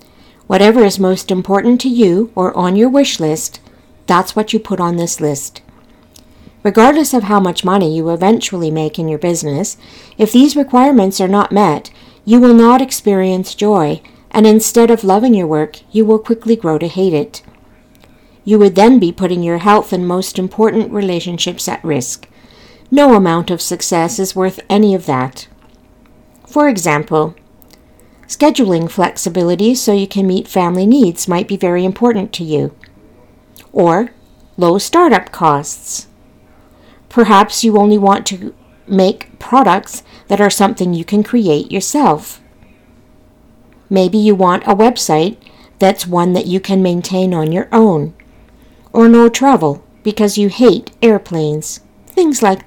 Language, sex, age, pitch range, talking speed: English, female, 60-79, 175-220 Hz, 150 wpm